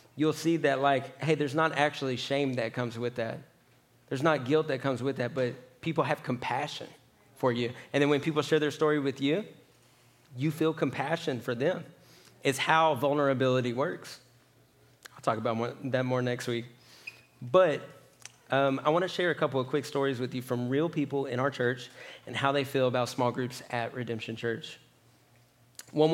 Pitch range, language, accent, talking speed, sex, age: 125-150 Hz, English, American, 185 wpm, male, 30-49